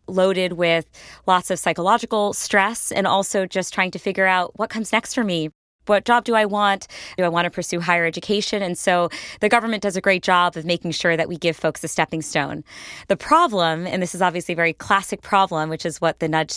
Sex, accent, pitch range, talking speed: female, American, 170-210 Hz, 230 wpm